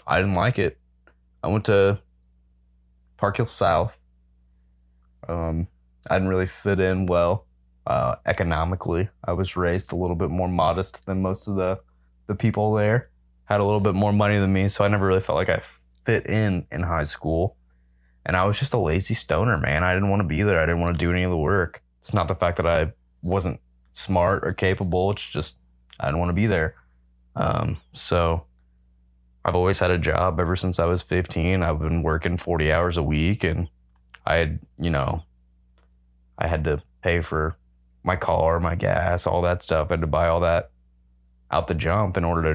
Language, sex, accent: English, male, American